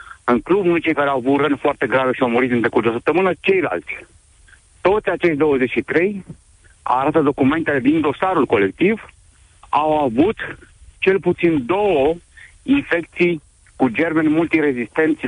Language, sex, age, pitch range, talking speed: Romanian, male, 60-79, 140-185 Hz, 140 wpm